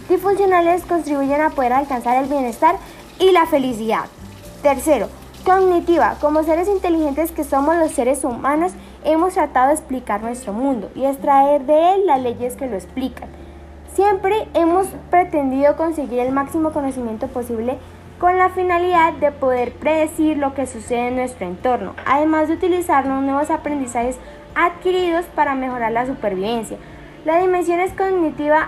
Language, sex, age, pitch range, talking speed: Spanish, female, 10-29, 255-330 Hz, 145 wpm